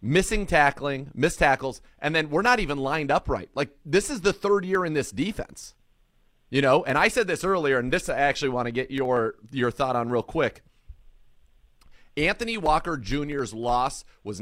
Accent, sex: American, male